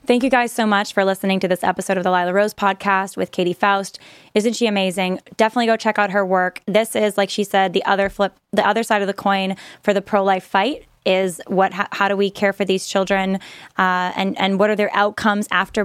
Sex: female